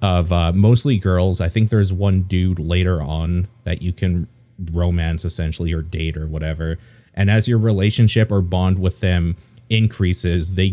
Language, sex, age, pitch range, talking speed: English, male, 30-49, 85-105 Hz, 170 wpm